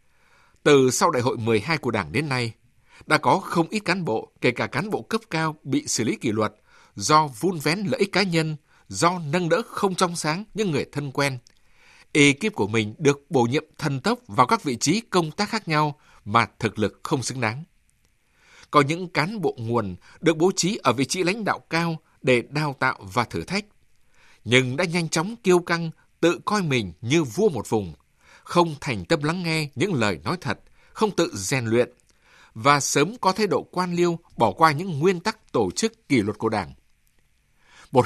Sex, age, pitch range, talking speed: male, 60-79, 125-180 Hz, 205 wpm